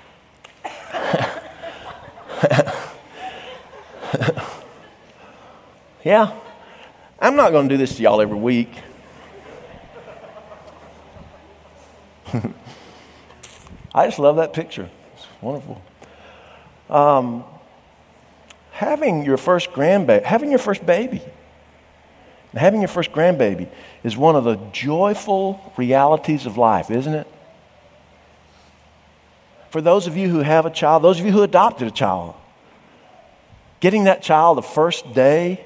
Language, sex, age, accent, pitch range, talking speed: English, male, 50-69, American, 140-205 Hz, 105 wpm